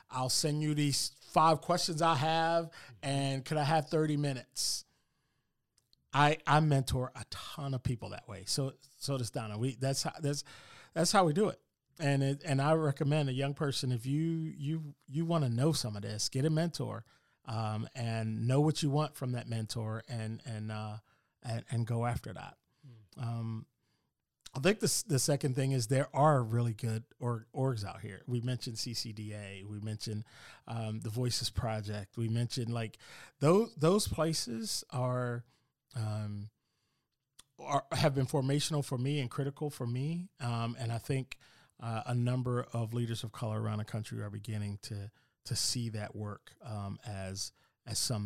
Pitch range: 110-145 Hz